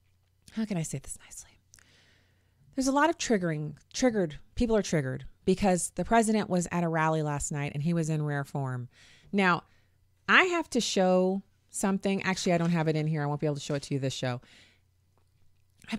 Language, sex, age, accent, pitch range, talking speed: English, female, 30-49, American, 125-170 Hz, 205 wpm